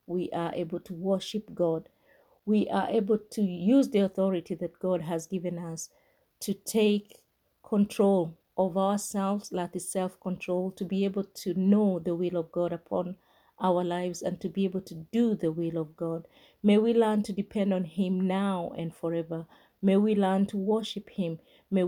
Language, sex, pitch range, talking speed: English, female, 170-205 Hz, 175 wpm